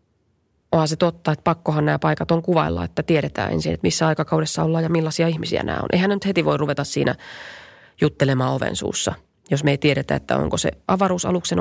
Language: Finnish